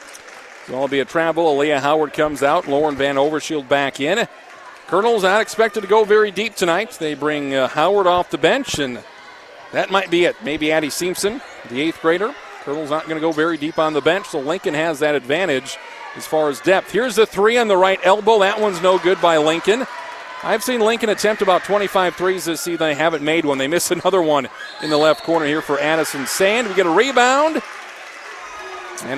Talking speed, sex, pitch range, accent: 210 wpm, male, 155-215 Hz, American